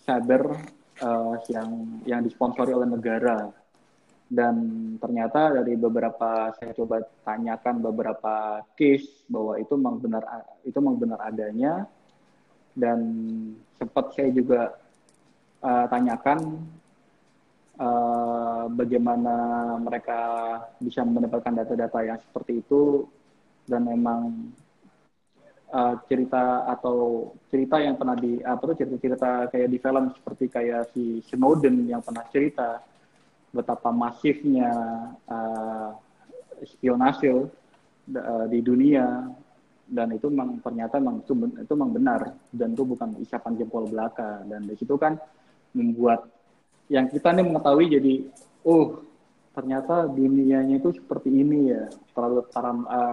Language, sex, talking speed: Indonesian, male, 115 wpm